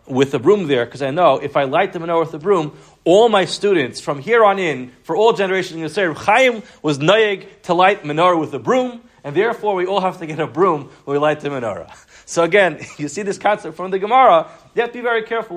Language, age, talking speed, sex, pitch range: English, 30-49, 250 wpm, male, 155-220 Hz